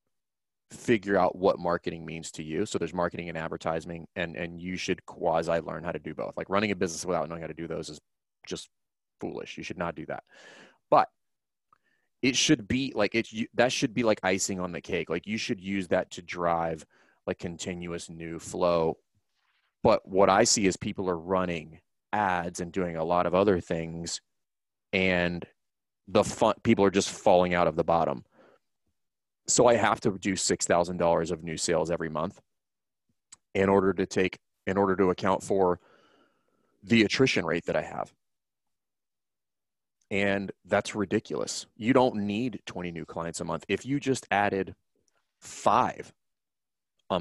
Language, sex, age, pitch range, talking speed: English, male, 30-49, 85-100 Hz, 170 wpm